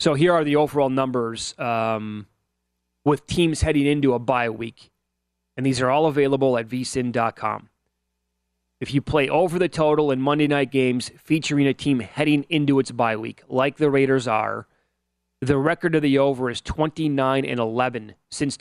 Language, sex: English, male